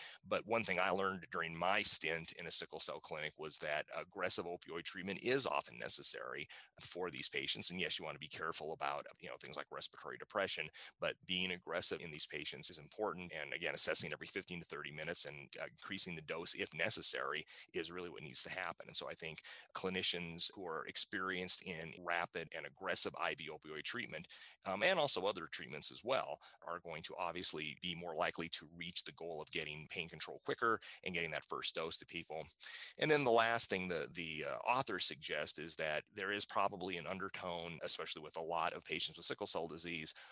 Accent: American